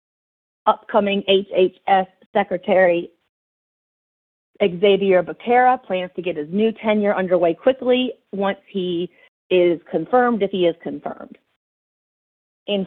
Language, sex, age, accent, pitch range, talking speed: English, female, 40-59, American, 170-205 Hz, 105 wpm